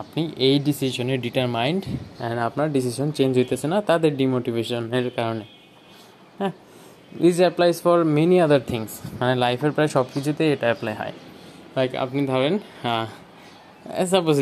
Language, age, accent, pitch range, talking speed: Bengali, 20-39, native, 120-155 Hz, 110 wpm